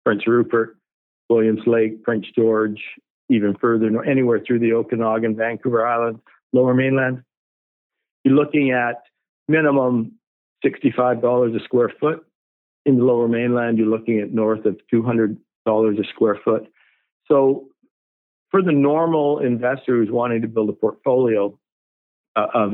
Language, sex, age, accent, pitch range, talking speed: English, male, 50-69, American, 105-125 Hz, 130 wpm